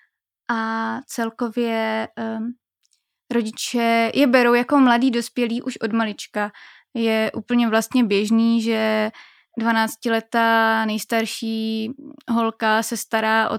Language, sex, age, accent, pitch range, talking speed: Czech, female, 20-39, native, 220-235 Hz, 100 wpm